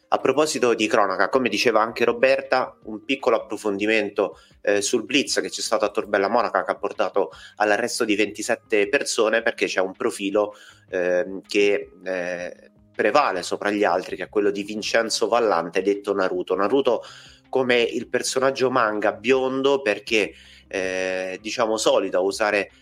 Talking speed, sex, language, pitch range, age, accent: 155 wpm, male, Italian, 100-120 Hz, 30-49, native